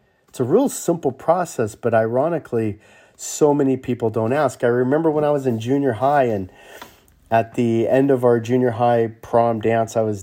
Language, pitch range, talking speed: English, 115-150 Hz, 190 wpm